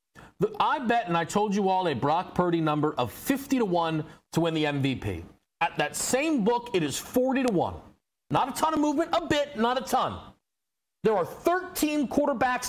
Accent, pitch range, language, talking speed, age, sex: American, 170-270 Hz, English, 200 wpm, 40-59, male